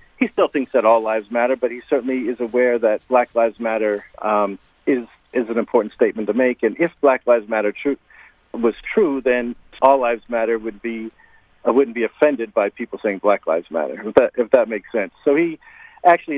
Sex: male